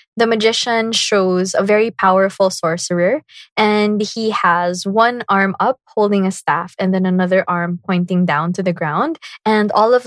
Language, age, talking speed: English, 20-39, 165 wpm